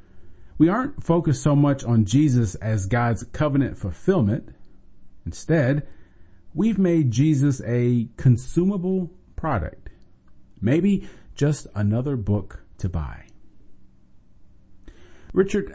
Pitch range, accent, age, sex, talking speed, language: 95-130 Hz, American, 40-59, male, 95 wpm, English